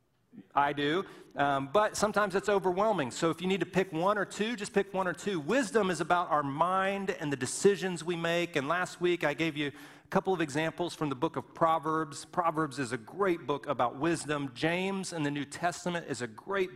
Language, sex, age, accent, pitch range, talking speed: English, male, 40-59, American, 145-195 Hz, 220 wpm